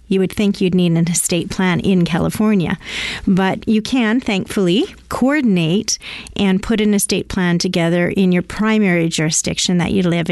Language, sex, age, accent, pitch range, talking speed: English, female, 40-59, American, 180-215 Hz, 165 wpm